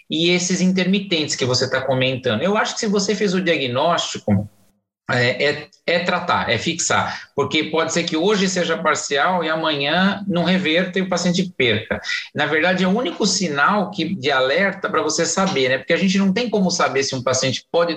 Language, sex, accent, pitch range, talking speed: Portuguese, male, Brazilian, 140-185 Hz, 195 wpm